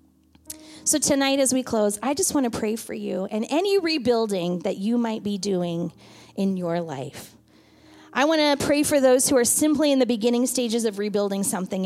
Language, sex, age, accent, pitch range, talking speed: English, female, 30-49, American, 210-290 Hz, 195 wpm